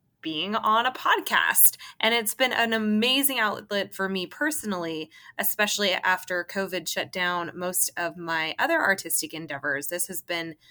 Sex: female